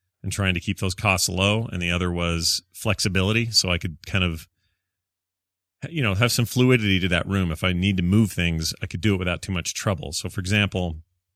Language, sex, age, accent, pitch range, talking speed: English, male, 30-49, American, 90-105 Hz, 220 wpm